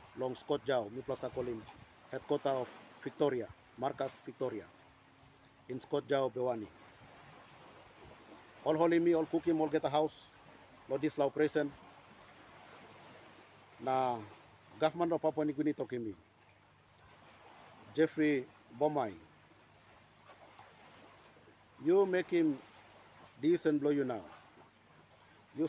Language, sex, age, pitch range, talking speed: Malay, male, 50-69, 140-170 Hz, 105 wpm